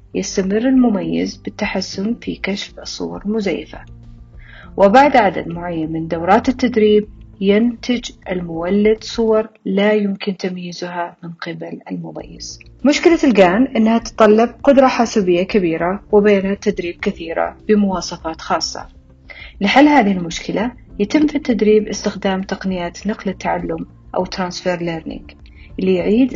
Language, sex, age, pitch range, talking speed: Arabic, female, 40-59, 180-220 Hz, 110 wpm